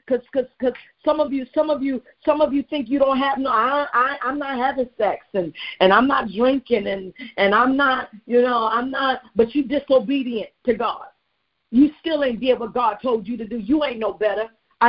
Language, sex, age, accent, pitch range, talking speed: English, female, 50-69, American, 235-285 Hz, 225 wpm